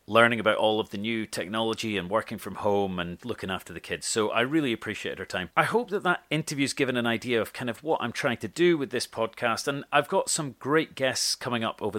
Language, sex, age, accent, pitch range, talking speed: English, male, 30-49, British, 105-140 Hz, 255 wpm